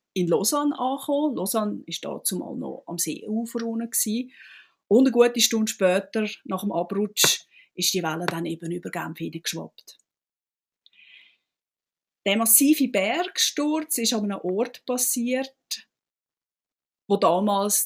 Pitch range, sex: 185-255 Hz, female